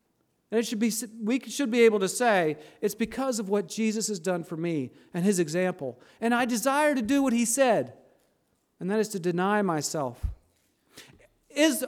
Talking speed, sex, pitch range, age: 185 wpm, male, 220-285 Hz, 40-59